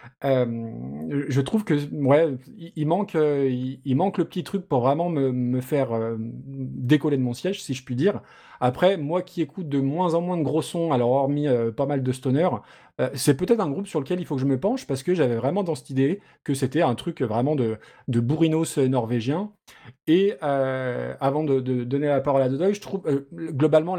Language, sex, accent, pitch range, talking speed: French, male, French, 130-160 Hz, 220 wpm